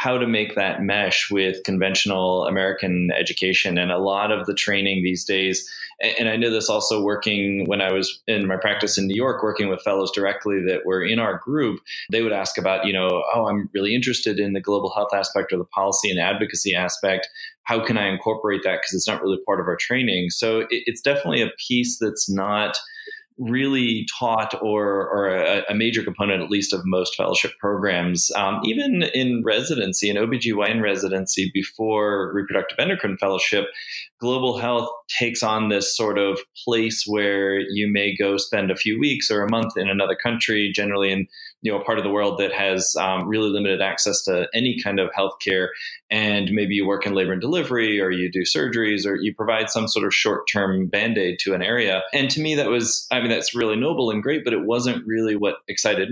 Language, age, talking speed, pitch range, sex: English, 20-39, 205 wpm, 95-110 Hz, male